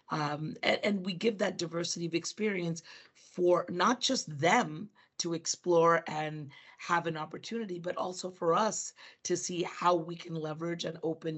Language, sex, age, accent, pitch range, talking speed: English, female, 40-59, American, 165-210 Hz, 165 wpm